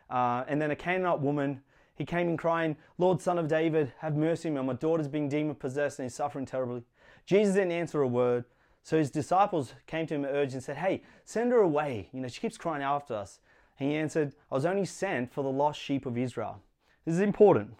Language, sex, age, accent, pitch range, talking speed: English, male, 30-49, Australian, 130-180 Hz, 225 wpm